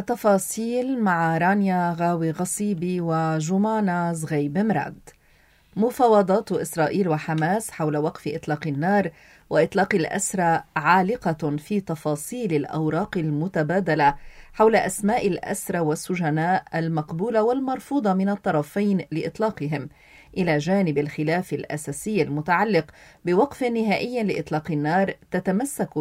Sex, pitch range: female, 160-215 Hz